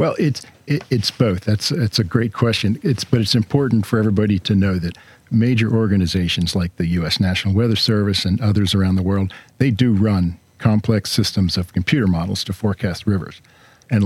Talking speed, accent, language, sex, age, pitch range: 190 wpm, American, English, male, 50-69, 95-110 Hz